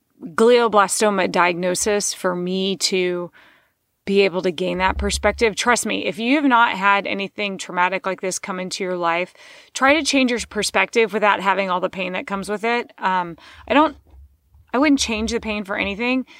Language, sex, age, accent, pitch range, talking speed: English, female, 30-49, American, 190-250 Hz, 185 wpm